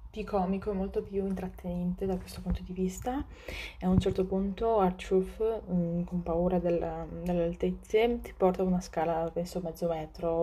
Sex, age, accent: female, 20-39, native